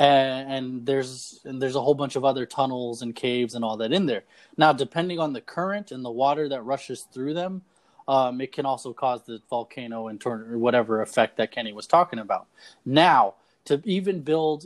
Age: 20-39